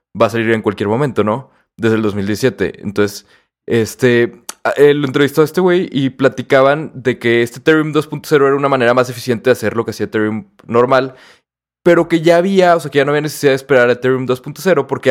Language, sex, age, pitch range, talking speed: Spanish, male, 20-39, 120-145 Hz, 210 wpm